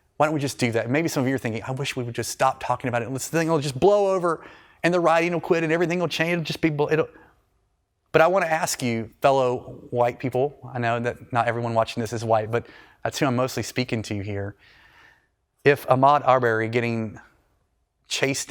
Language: English